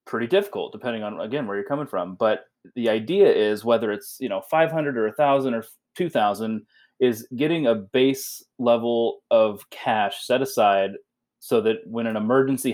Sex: male